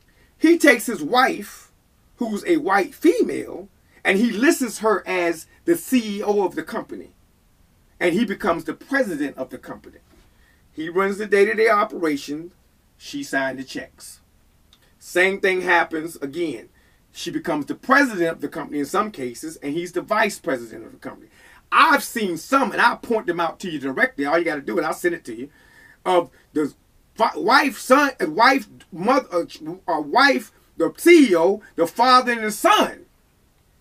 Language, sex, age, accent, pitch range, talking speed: English, male, 30-49, American, 160-250 Hz, 165 wpm